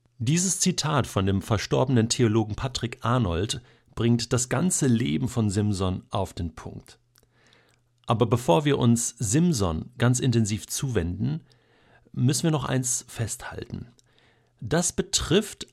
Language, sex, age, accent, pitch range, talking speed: German, male, 50-69, German, 100-120 Hz, 120 wpm